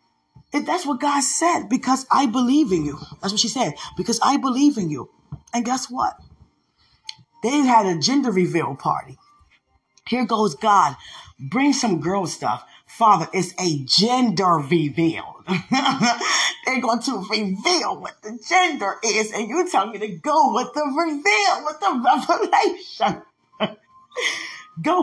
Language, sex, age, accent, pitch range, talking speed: English, female, 20-39, American, 210-310 Hz, 145 wpm